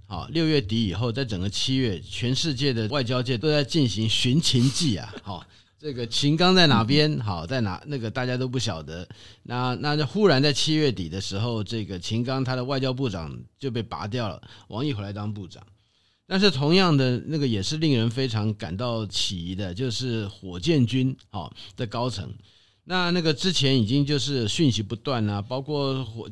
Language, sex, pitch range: Chinese, male, 105-140 Hz